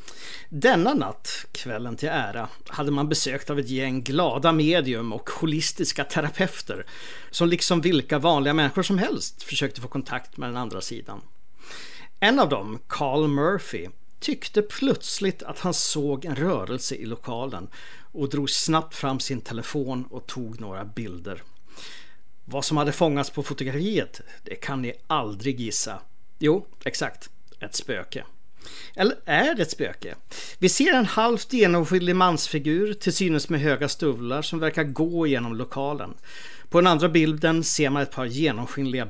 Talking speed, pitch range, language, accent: 150 wpm, 130-175 Hz, English, Swedish